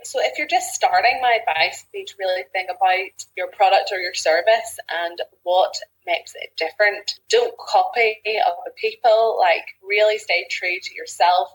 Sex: female